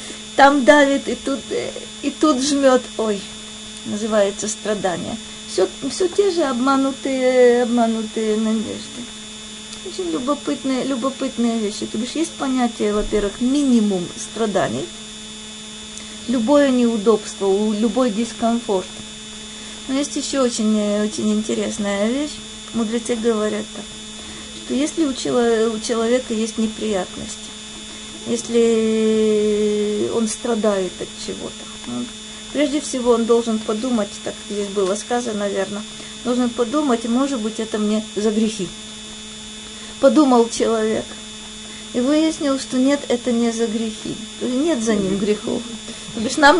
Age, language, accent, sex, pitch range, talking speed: 20-39, Russian, native, female, 215-255 Hz, 110 wpm